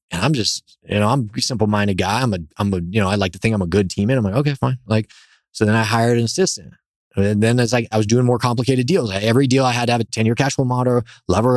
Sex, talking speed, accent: male, 295 wpm, American